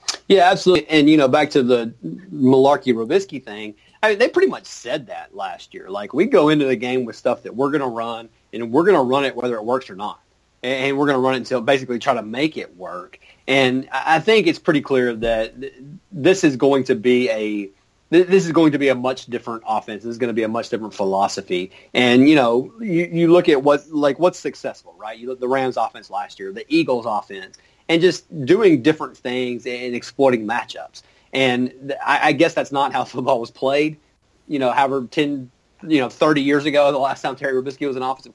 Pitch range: 120-145 Hz